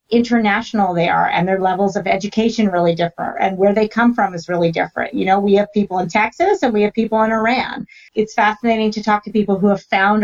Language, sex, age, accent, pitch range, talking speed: English, female, 40-59, American, 180-220 Hz, 235 wpm